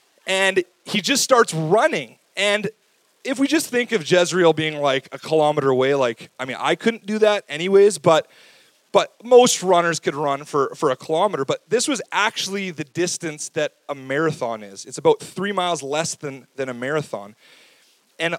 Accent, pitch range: American, 135-190 Hz